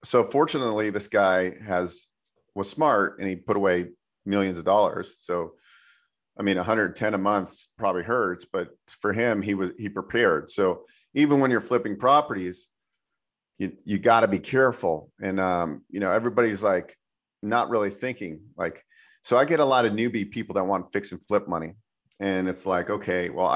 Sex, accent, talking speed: male, American, 180 wpm